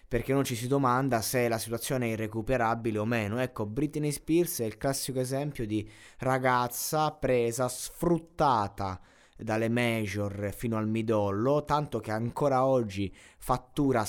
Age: 20-39